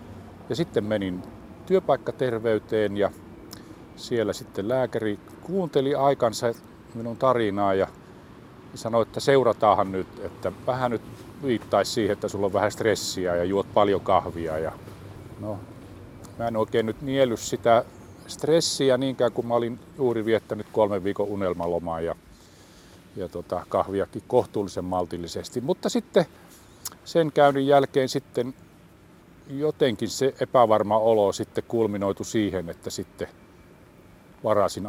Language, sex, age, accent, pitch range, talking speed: Finnish, male, 50-69, native, 95-135 Hz, 120 wpm